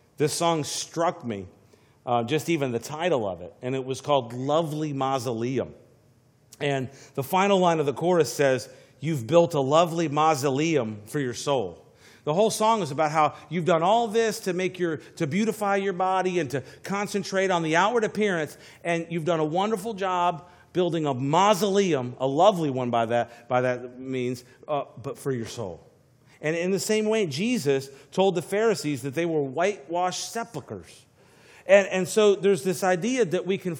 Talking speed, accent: 180 wpm, American